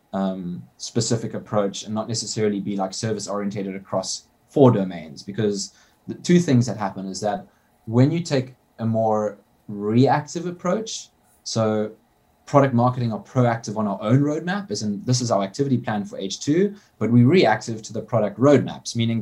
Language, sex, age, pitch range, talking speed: English, male, 20-39, 100-120 Hz, 170 wpm